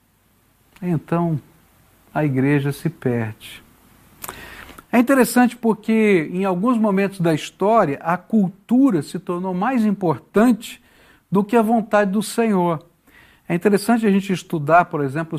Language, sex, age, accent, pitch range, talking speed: Portuguese, male, 60-79, Brazilian, 140-205 Hz, 125 wpm